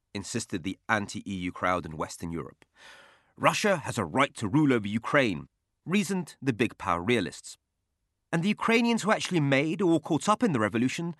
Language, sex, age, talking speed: English, male, 30-49, 170 wpm